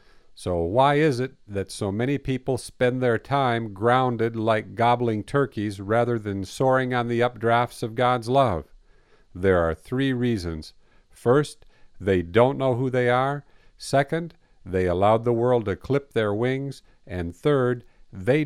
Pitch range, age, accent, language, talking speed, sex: 105-130 Hz, 50-69, American, English, 155 wpm, male